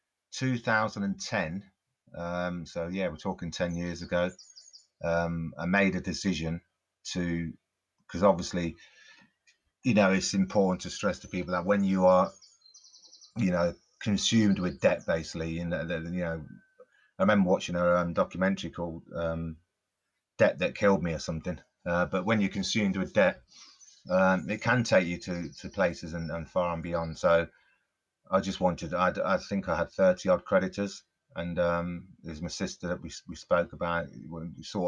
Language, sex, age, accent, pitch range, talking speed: English, male, 30-49, British, 85-100 Hz, 165 wpm